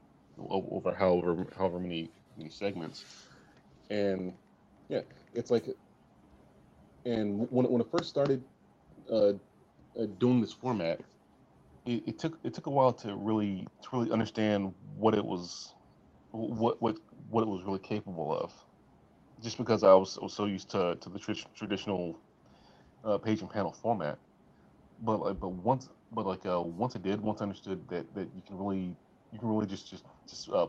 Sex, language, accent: male, English, American